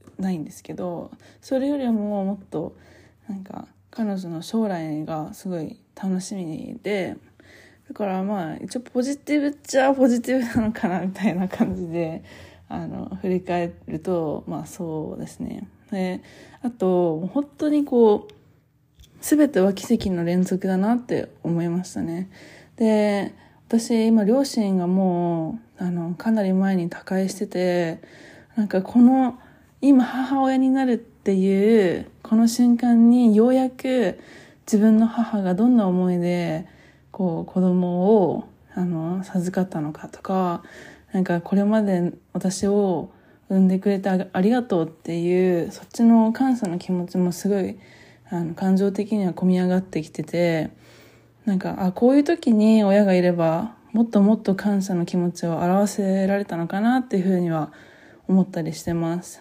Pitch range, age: 180-230 Hz, 20-39